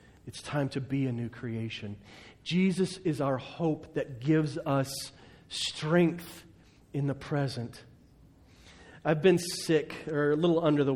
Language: English